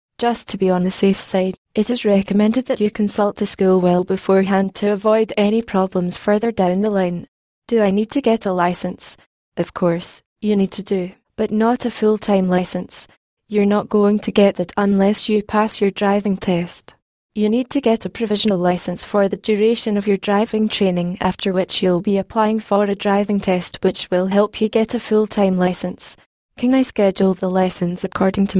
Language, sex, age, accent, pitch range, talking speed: English, female, 10-29, British, 185-215 Hz, 195 wpm